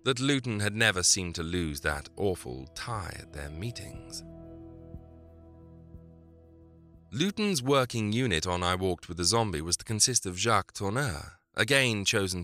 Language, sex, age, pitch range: English, male, 30-49, 80-115 Hz